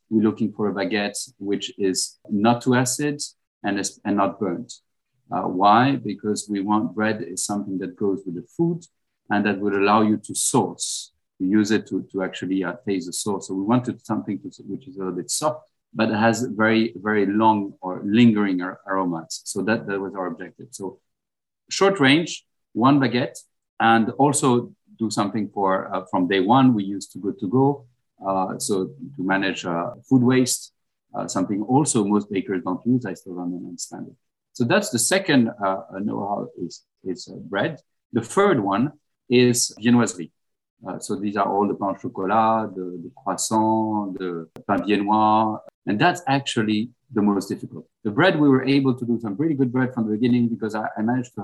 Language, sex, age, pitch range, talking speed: English, male, 50-69, 100-125 Hz, 190 wpm